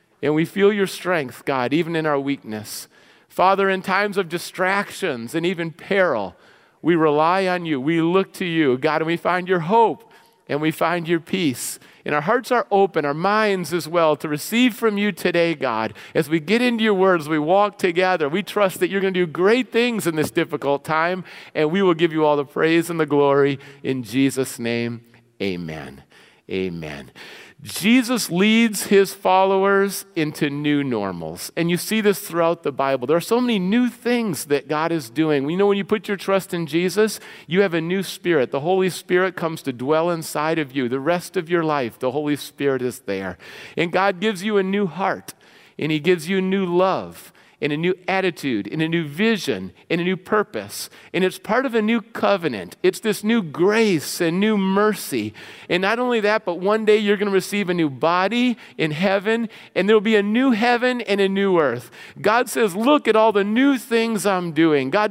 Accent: American